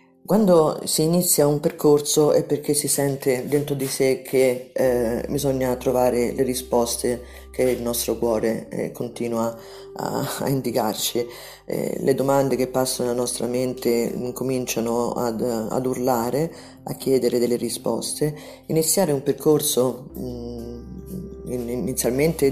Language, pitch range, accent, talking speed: Italian, 120-135 Hz, native, 125 wpm